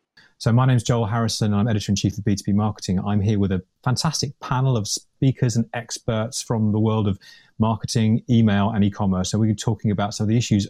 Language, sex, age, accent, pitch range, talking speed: English, male, 30-49, British, 105-125 Hz, 210 wpm